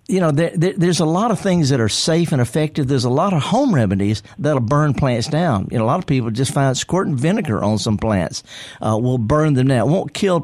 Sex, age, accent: male, 50-69, American